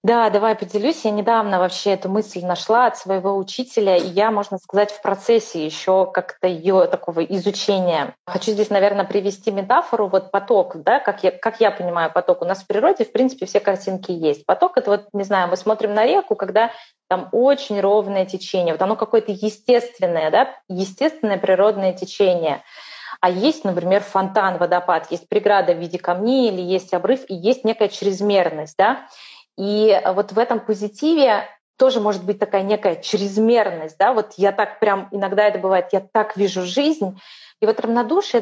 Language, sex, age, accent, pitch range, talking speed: Russian, female, 20-39, native, 185-220 Hz, 175 wpm